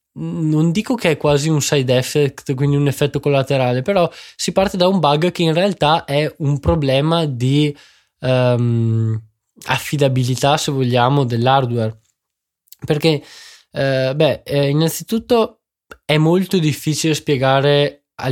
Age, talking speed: 20-39, 130 wpm